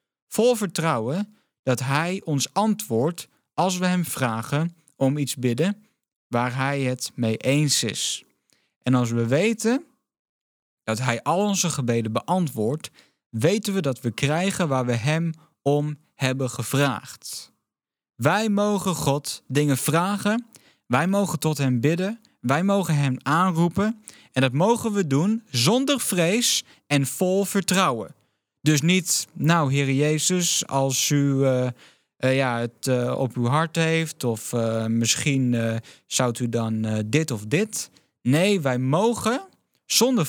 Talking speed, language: 140 wpm, Dutch